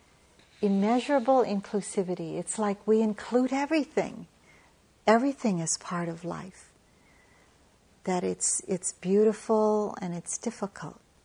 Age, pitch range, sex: 60-79, 175-215 Hz, female